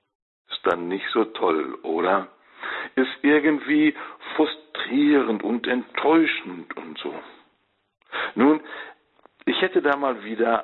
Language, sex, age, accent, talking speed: German, male, 60-79, German, 100 wpm